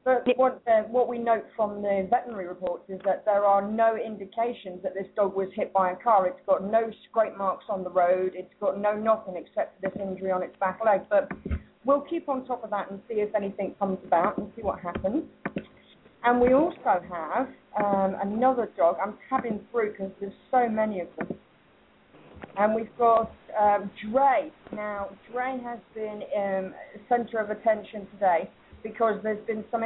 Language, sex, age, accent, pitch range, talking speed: English, female, 30-49, British, 195-230 Hz, 190 wpm